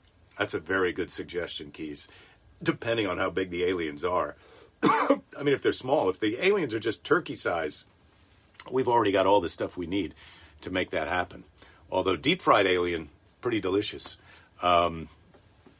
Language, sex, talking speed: English, male, 165 wpm